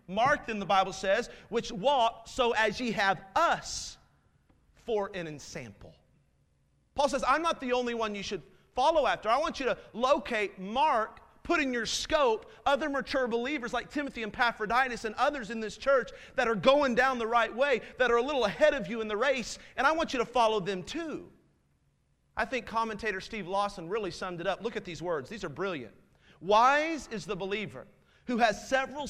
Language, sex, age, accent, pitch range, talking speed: English, male, 40-59, American, 200-250 Hz, 200 wpm